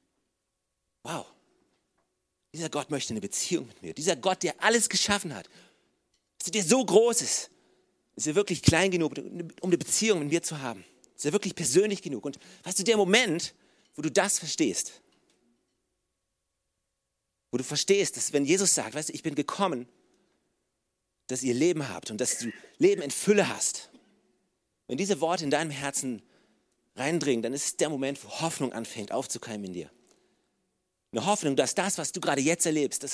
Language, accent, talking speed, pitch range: German, German, 175 wpm, 145-195 Hz